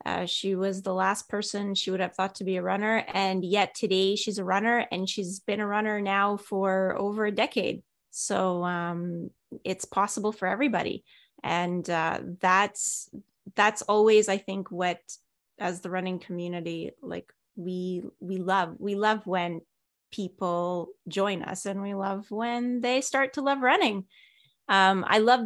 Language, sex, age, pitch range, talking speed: English, female, 20-39, 180-210 Hz, 165 wpm